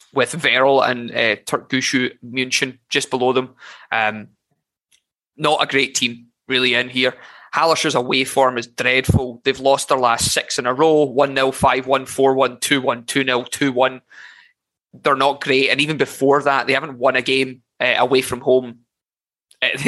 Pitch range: 125-135 Hz